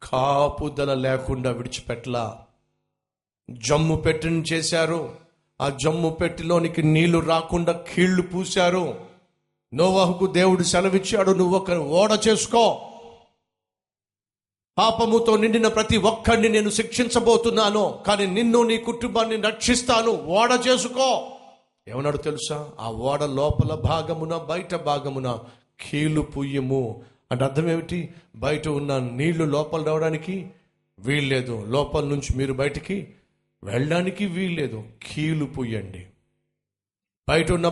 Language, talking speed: Telugu, 100 wpm